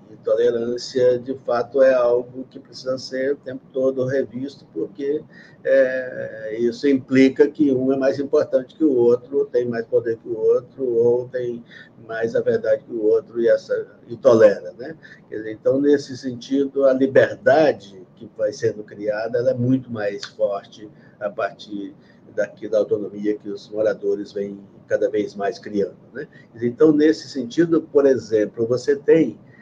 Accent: Brazilian